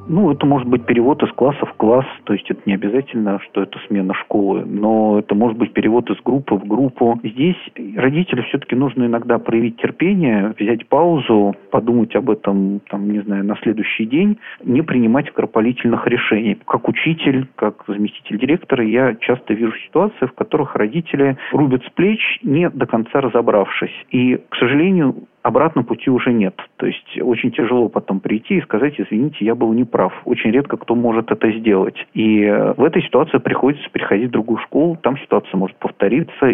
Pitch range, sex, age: 105-135 Hz, male, 40-59